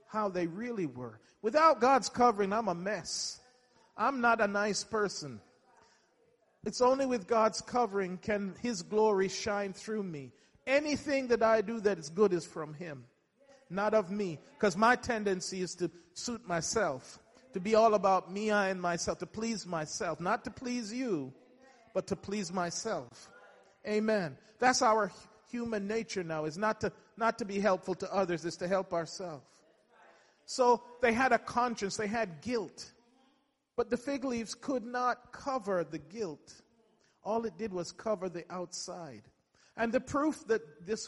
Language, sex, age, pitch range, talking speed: English, male, 40-59, 180-230 Hz, 165 wpm